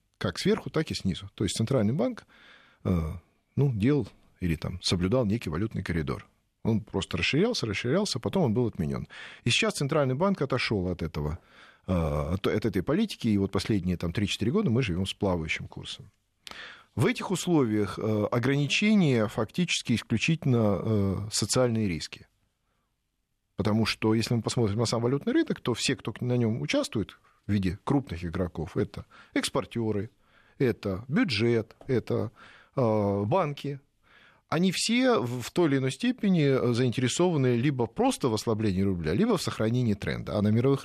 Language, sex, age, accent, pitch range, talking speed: Russian, male, 40-59, native, 100-135 Hz, 150 wpm